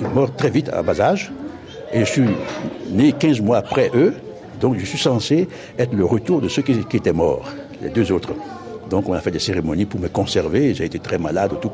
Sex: male